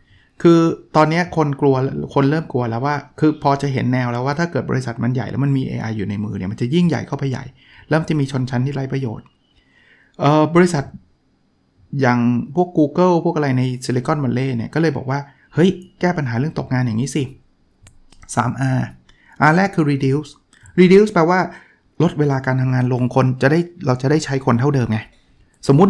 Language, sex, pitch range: Thai, male, 125-155 Hz